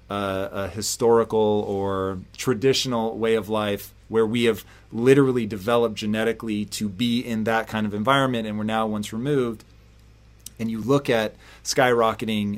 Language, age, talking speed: English, 30-49, 150 wpm